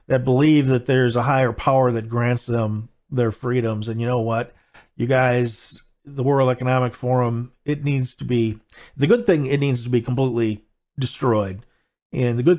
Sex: male